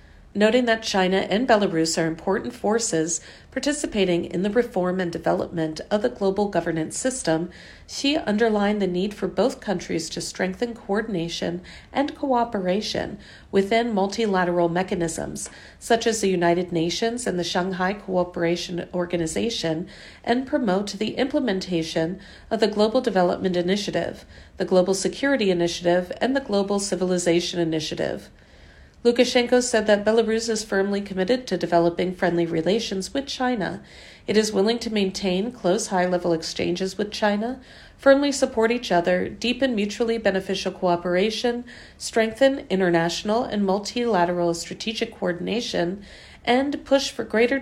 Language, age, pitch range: Chinese, 50-69, 175-230 Hz